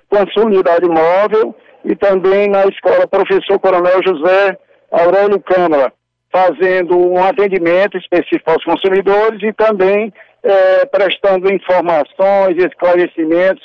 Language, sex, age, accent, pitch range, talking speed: Portuguese, male, 60-79, Brazilian, 175-200 Hz, 105 wpm